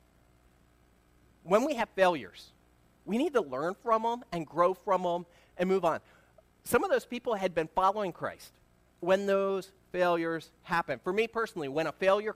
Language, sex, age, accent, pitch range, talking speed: English, male, 40-59, American, 135-185 Hz, 170 wpm